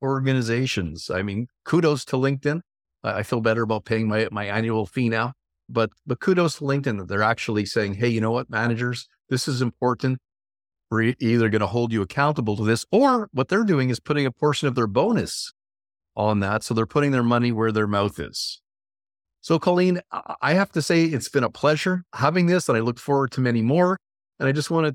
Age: 50-69